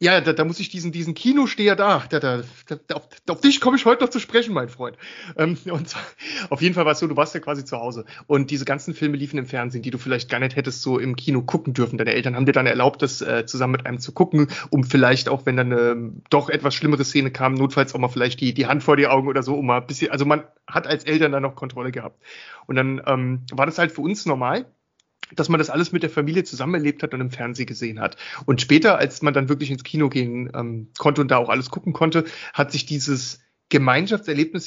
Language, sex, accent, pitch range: German, male, German, 130-160 Hz